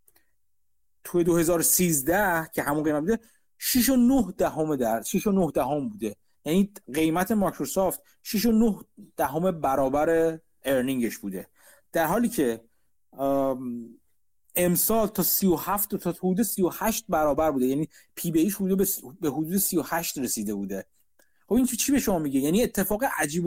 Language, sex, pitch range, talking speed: Persian, male, 150-205 Hz, 145 wpm